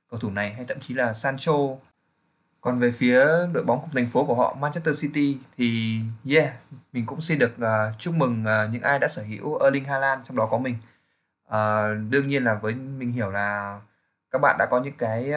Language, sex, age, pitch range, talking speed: Vietnamese, male, 20-39, 110-140 Hz, 205 wpm